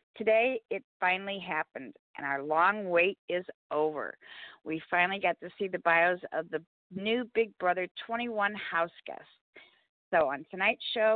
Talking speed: 155 wpm